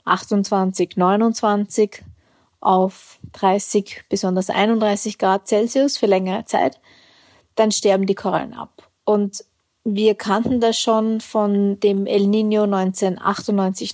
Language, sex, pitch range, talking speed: German, female, 200-230 Hz, 110 wpm